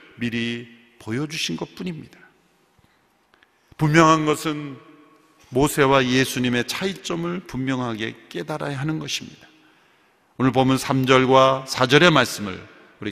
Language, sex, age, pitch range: Korean, male, 40-59, 120-170 Hz